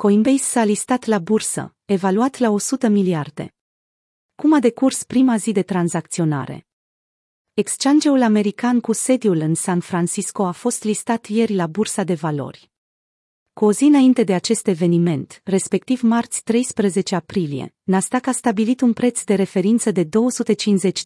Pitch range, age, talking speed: 175-230 Hz, 30-49, 145 wpm